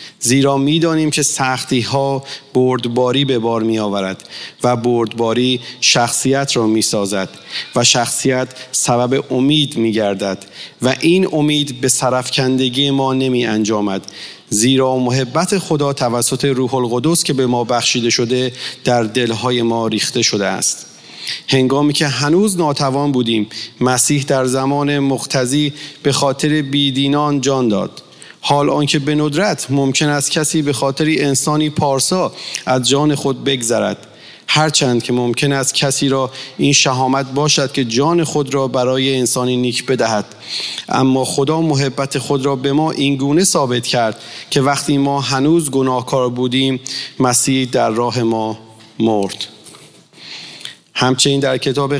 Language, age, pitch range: English, 40-59, 120-145 Hz